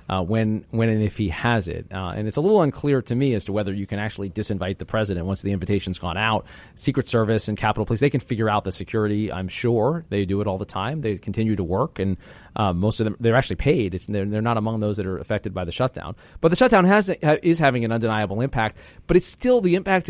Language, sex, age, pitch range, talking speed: English, male, 30-49, 105-145 Hz, 240 wpm